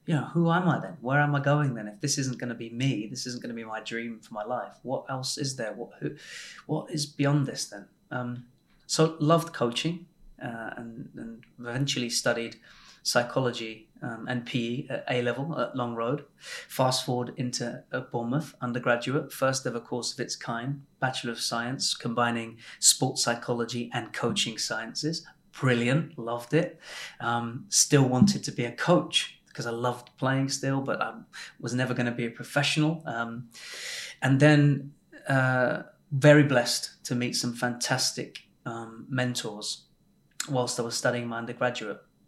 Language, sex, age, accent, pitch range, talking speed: English, male, 30-49, British, 120-140 Hz, 170 wpm